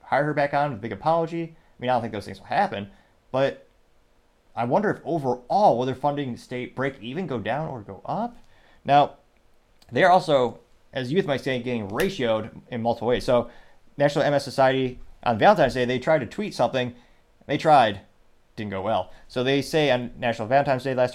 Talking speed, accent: 200 wpm, American